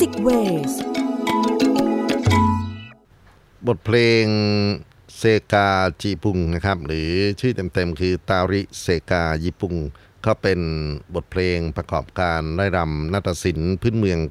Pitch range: 80-100 Hz